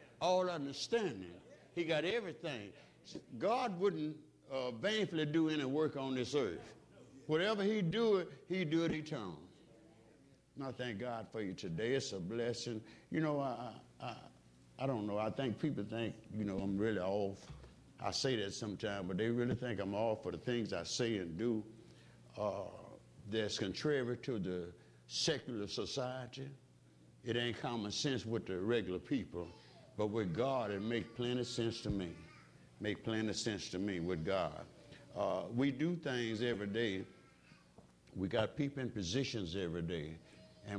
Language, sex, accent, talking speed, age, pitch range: English, male, American, 165 wpm, 60-79, 100-140 Hz